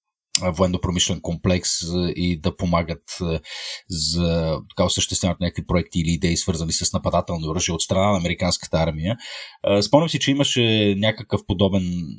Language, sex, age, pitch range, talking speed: Bulgarian, male, 30-49, 90-110 Hz, 135 wpm